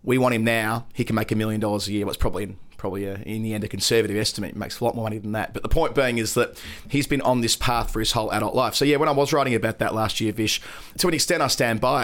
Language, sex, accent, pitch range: English, male, Australian, 110-130 Hz